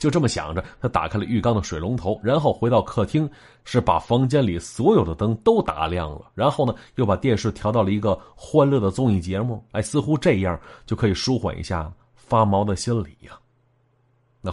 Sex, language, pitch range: male, Chinese, 95-135 Hz